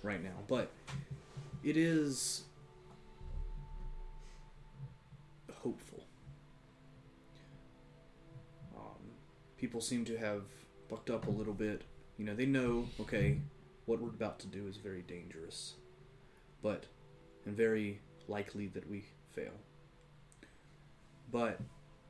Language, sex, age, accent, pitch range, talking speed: English, male, 30-49, American, 100-135 Hz, 100 wpm